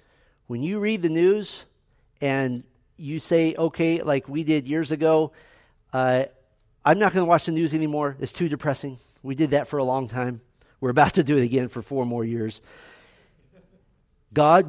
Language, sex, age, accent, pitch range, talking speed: English, male, 40-59, American, 120-165 Hz, 175 wpm